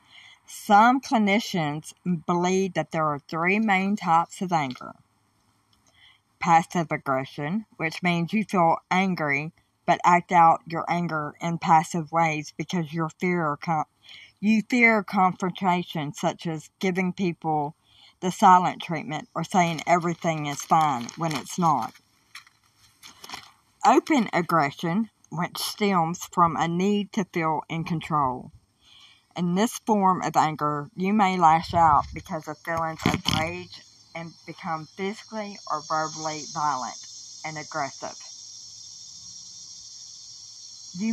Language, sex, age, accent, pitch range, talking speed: English, female, 50-69, American, 150-185 Hz, 115 wpm